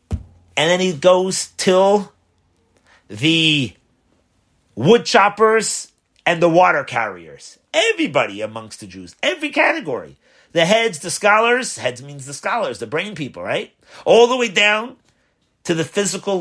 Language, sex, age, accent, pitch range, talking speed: English, male, 40-59, American, 110-185 Hz, 130 wpm